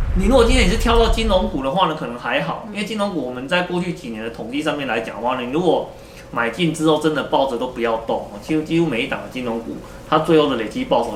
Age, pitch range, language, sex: 20-39, 125-175 Hz, Chinese, male